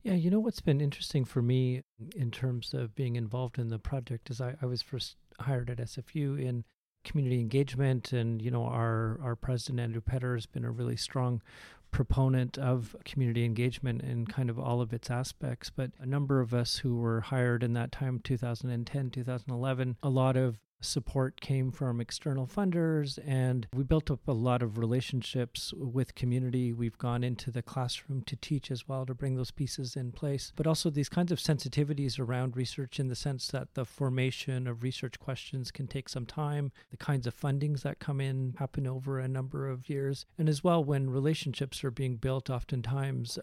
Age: 40-59